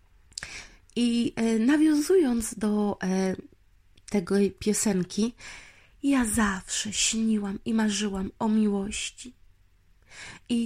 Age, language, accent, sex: 30-49, Polish, native, female